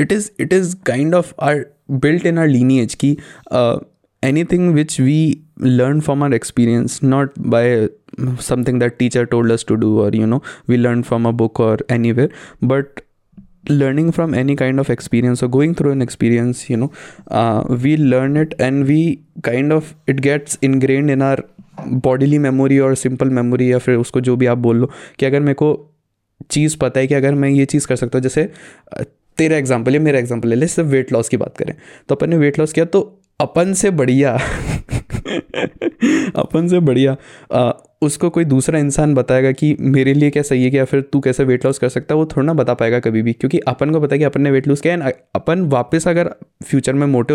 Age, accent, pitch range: 20-39, native, 125-155 Hz